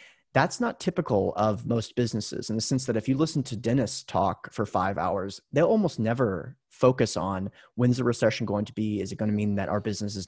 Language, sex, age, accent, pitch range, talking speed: English, male, 30-49, American, 105-130 Hz, 230 wpm